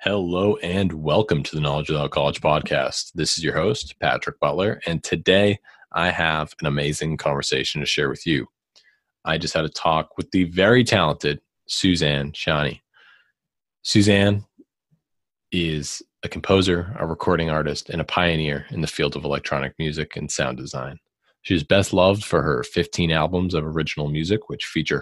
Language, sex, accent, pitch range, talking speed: English, male, American, 75-90 Hz, 165 wpm